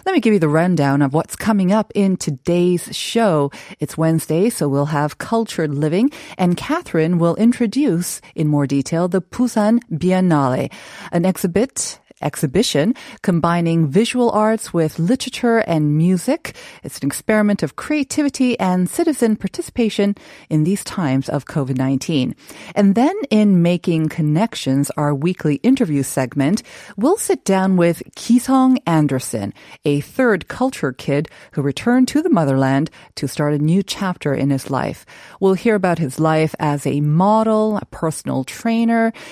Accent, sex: American, female